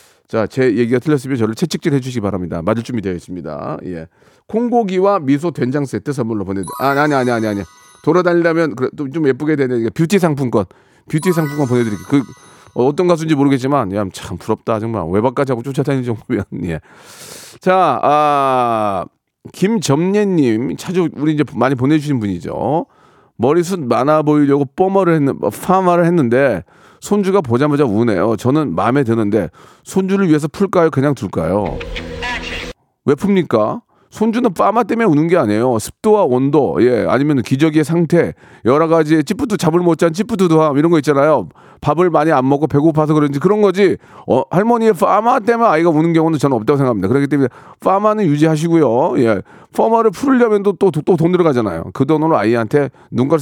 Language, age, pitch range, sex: Korean, 40-59, 125-170 Hz, male